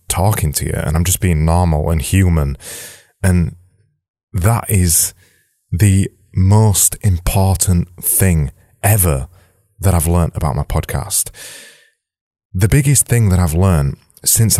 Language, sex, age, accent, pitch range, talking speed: English, male, 30-49, British, 85-105 Hz, 125 wpm